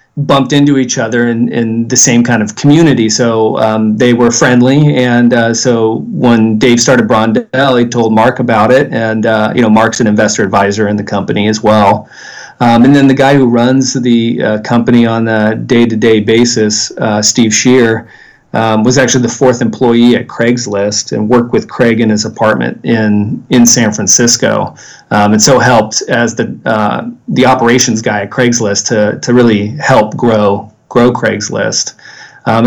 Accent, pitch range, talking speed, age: American, 105-120 Hz, 180 wpm, 40-59